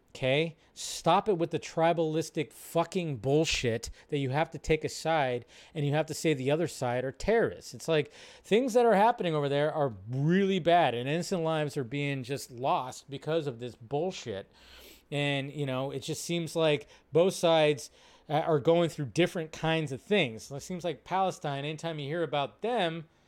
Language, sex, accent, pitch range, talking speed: English, male, American, 135-170 Hz, 185 wpm